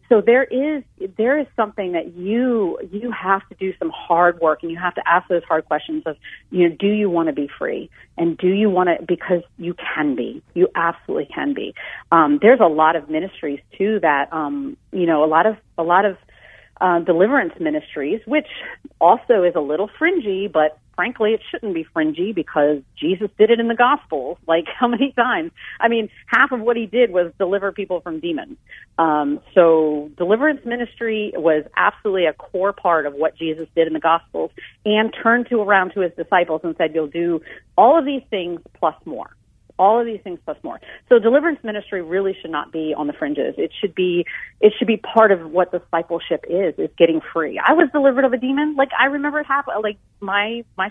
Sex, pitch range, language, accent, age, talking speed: female, 170-240 Hz, English, American, 40-59, 210 wpm